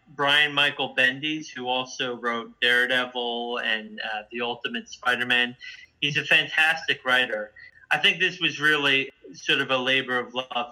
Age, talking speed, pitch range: 30-49, 150 wpm, 125-150 Hz